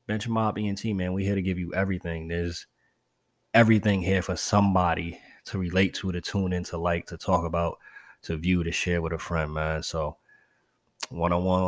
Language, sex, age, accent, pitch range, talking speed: English, male, 20-39, American, 85-100 Hz, 185 wpm